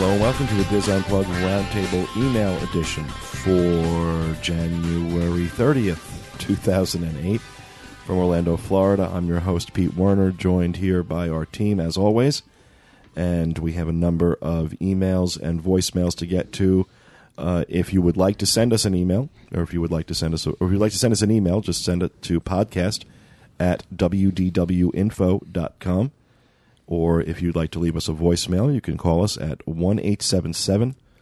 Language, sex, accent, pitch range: English, male, American, 85-100 Hz